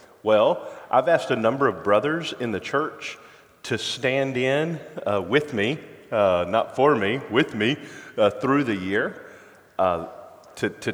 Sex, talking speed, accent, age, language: male, 160 wpm, American, 40-59, English